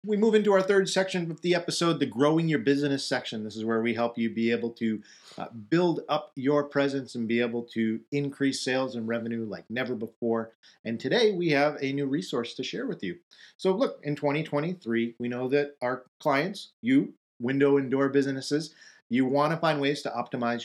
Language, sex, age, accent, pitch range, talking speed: English, male, 40-59, American, 120-155 Hz, 205 wpm